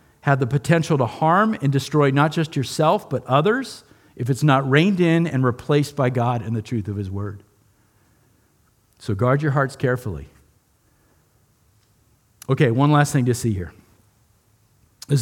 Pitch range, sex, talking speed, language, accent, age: 120-175 Hz, male, 160 wpm, English, American, 50-69